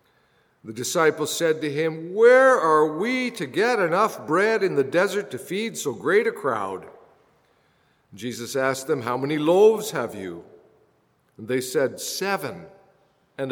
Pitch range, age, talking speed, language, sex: 150-215 Hz, 50-69, 150 wpm, English, male